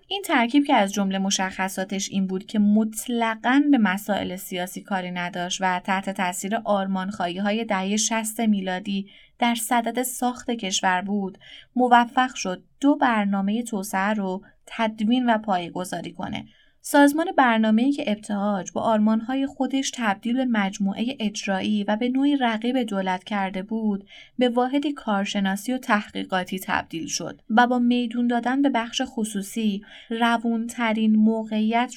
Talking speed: 135 wpm